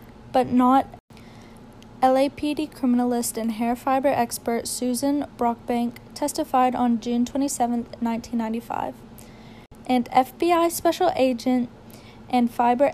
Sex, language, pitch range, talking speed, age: female, English, 235-265 Hz, 95 wpm, 10-29